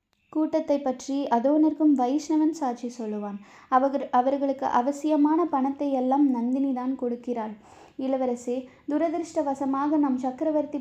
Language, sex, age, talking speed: Tamil, female, 20-39, 95 wpm